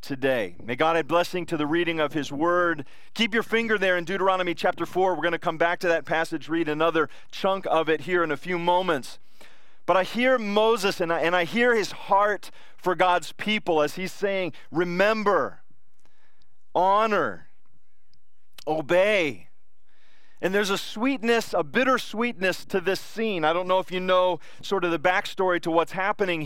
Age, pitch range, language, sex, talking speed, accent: 40-59, 170-210 Hz, English, male, 180 wpm, American